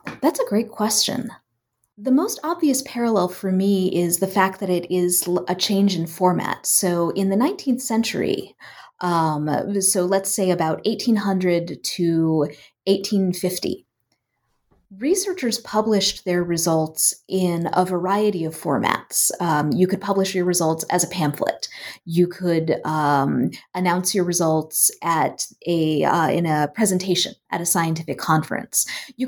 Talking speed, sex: 140 wpm, female